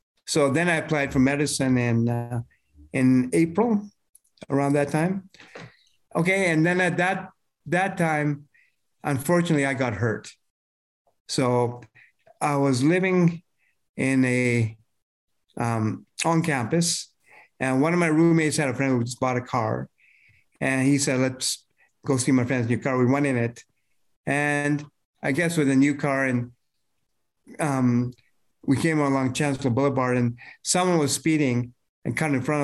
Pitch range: 120-150 Hz